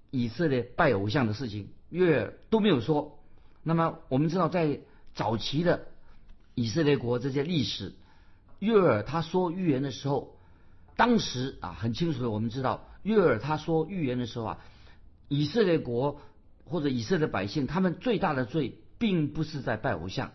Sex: male